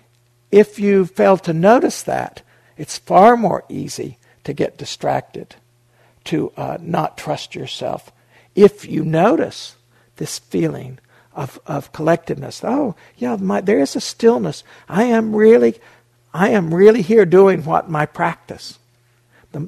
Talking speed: 135 wpm